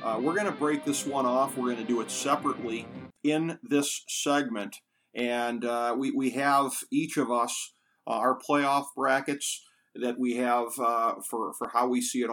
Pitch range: 120-140 Hz